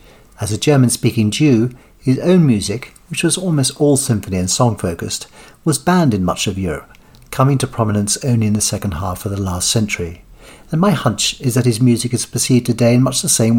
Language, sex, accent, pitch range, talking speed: English, male, British, 105-135 Hz, 205 wpm